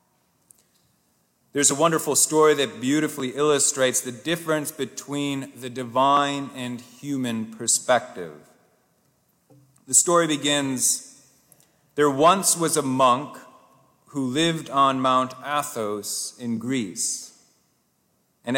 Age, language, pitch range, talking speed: 40-59, English, 130-155 Hz, 100 wpm